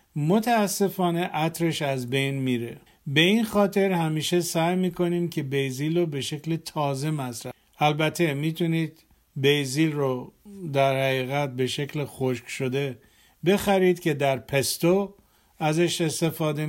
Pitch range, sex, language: 140-175 Hz, male, Persian